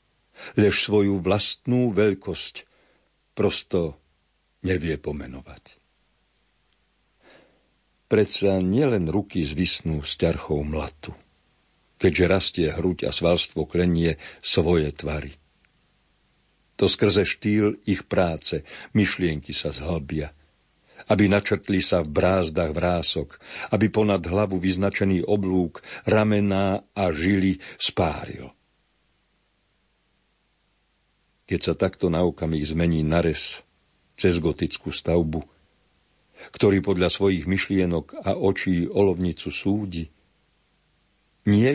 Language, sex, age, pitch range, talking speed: Slovak, male, 60-79, 80-100 Hz, 90 wpm